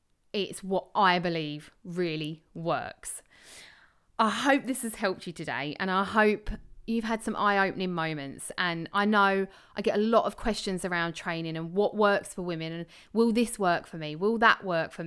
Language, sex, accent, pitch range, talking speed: English, female, British, 175-210 Hz, 185 wpm